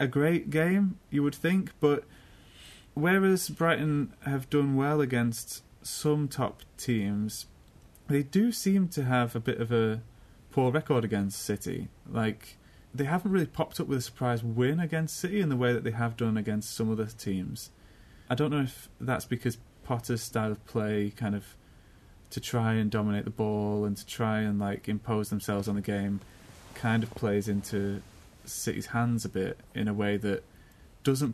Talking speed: 180 wpm